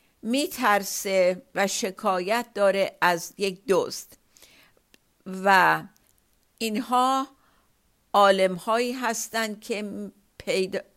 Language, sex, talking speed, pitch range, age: Persian, female, 70 wpm, 185-235 Hz, 50-69